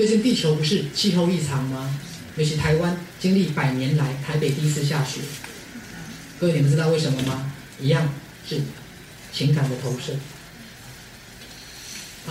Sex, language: male, Chinese